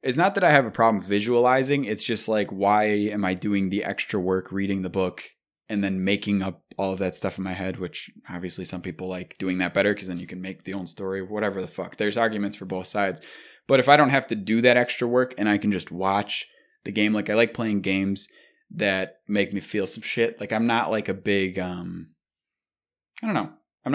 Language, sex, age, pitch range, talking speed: English, male, 20-39, 95-110 Hz, 240 wpm